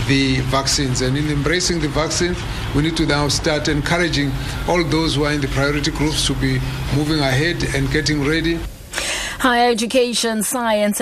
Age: 60-79